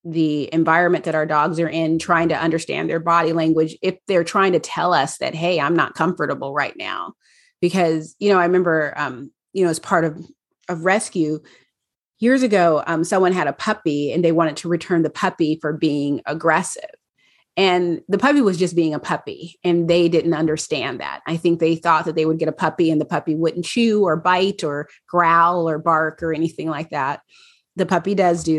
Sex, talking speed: female, 205 wpm